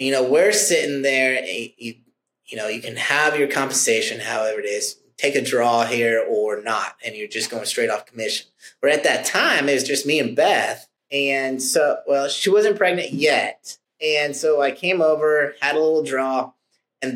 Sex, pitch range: male, 125-160 Hz